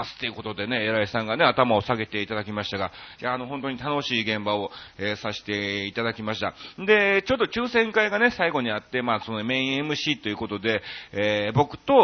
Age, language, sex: 40-59, Japanese, male